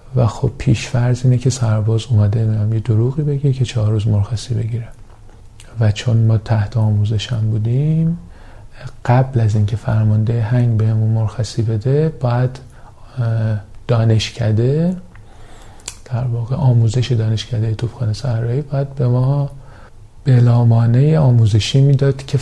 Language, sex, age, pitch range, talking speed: Persian, male, 40-59, 110-130 Hz, 130 wpm